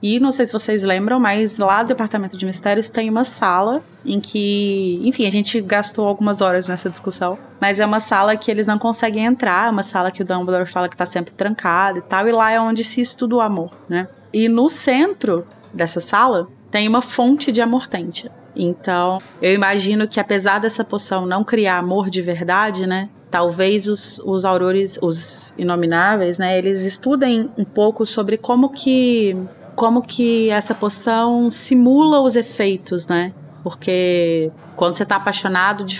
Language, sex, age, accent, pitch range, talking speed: Portuguese, female, 20-39, Brazilian, 180-220 Hz, 180 wpm